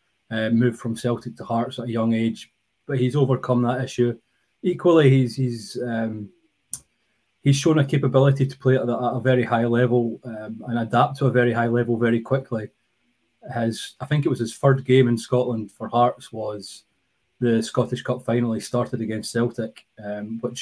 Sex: male